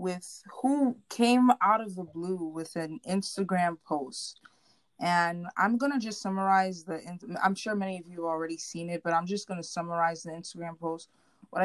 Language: English